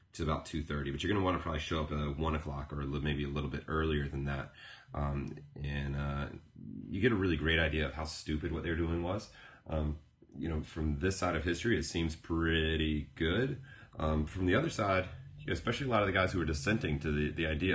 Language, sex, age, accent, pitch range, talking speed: English, male, 30-49, American, 75-90 Hz, 250 wpm